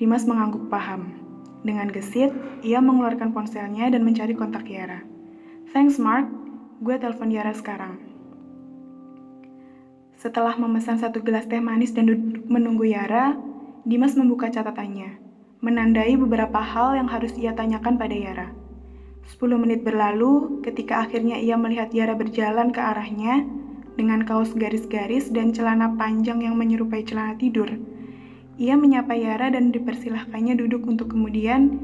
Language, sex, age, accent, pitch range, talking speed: Indonesian, female, 20-39, native, 215-245 Hz, 130 wpm